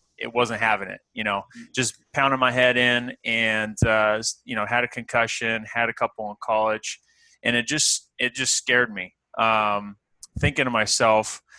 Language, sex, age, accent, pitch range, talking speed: English, male, 20-39, American, 110-125 Hz, 175 wpm